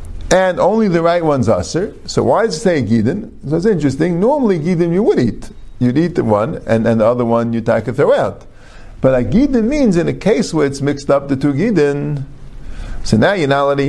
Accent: American